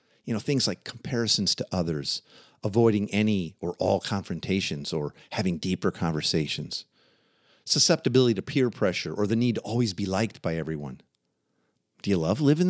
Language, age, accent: English, 50-69, American